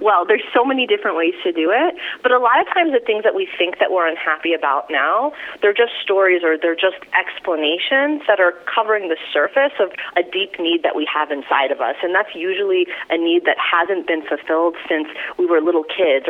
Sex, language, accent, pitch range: female, English, American, 155-245 Hz